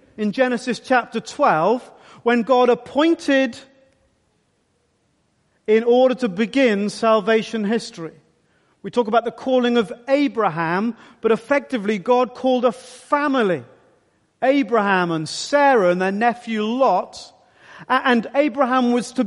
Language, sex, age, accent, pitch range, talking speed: English, male, 40-59, British, 200-255 Hz, 115 wpm